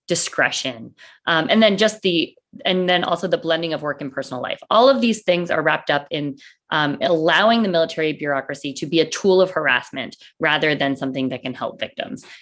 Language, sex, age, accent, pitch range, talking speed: English, female, 20-39, American, 145-190 Hz, 205 wpm